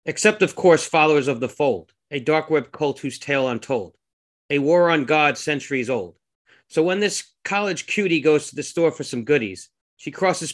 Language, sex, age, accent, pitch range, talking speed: English, male, 40-59, American, 135-170 Hz, 195 wpm